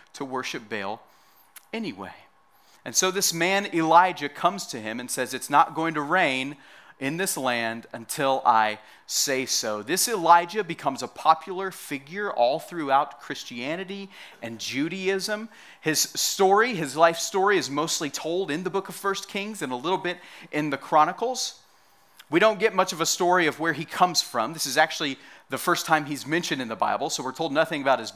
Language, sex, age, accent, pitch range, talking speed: English, male, 30-49, American, 135-180 Hz, 185 wpm